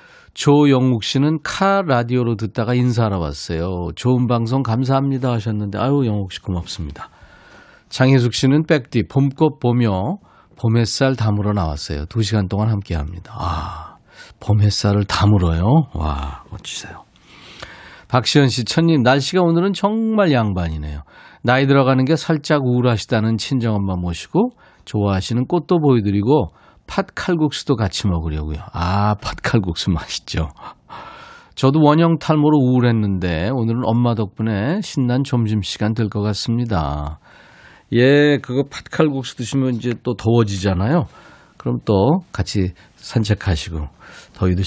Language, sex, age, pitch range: Korean, male, 40-59, 100-140 Hz